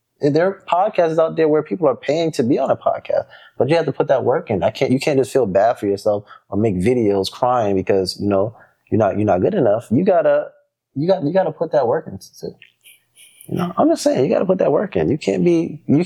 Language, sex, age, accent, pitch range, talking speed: English, male, 20-39, American, 120-185 Hz, 260 wpm